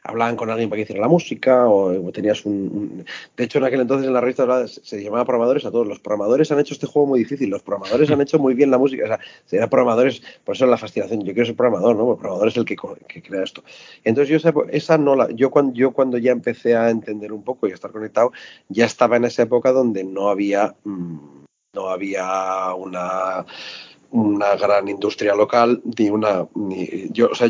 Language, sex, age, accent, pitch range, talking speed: Spanish, male, 30-49, Spanish, 105-130 Hz, 220 wpm